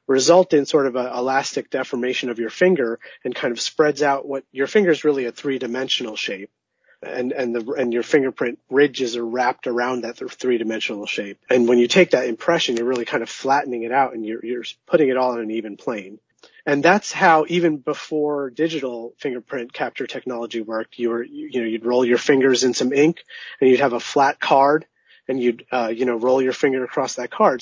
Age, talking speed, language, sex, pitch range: 30-49, 215 wpm, English, male, 120-140 Hz